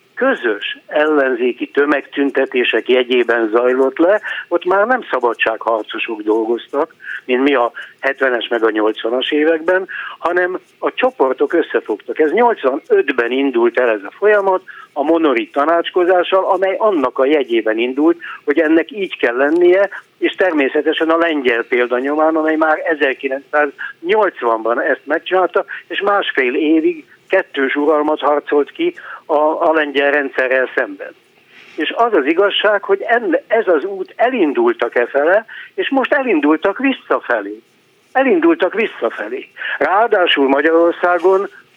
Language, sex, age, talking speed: Hungarian, male, 60-79, 120 wpm